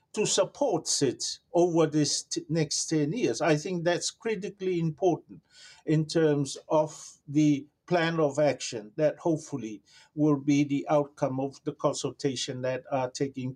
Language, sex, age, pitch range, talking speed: English, male, 50-69, 145-175 Hz, 140 wpm